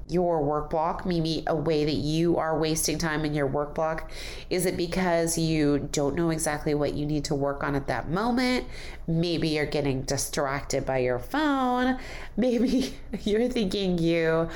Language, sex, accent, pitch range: English, female, American, 155-200 Hz